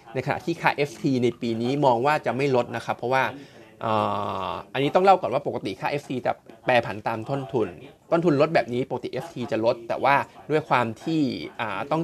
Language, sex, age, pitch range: Thai, male, 20-39, 115-140 Hz